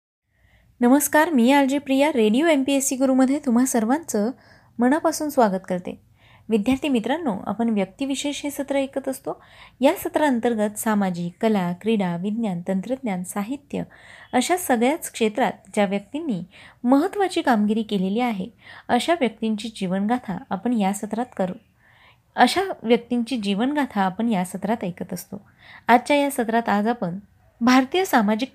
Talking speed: 130 wpm